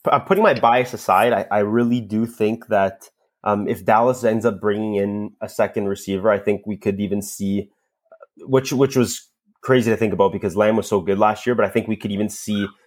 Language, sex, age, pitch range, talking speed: English, male, 20-39, 100-120 Hz, 225 wpm